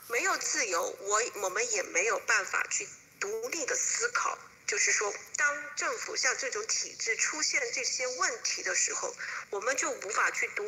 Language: Chinese